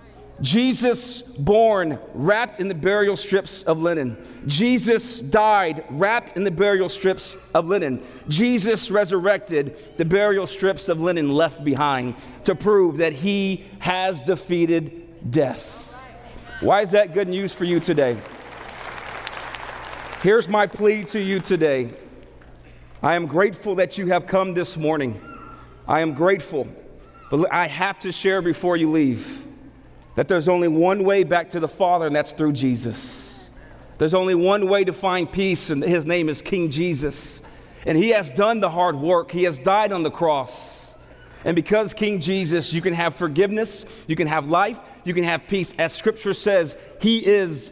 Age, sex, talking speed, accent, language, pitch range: 40-59, male, 160 wpm, American, English, 155-200 Hz